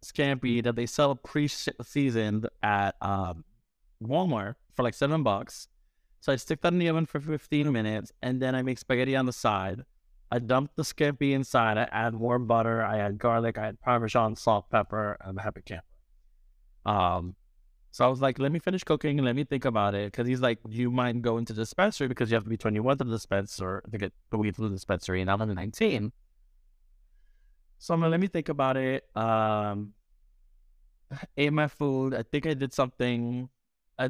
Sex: male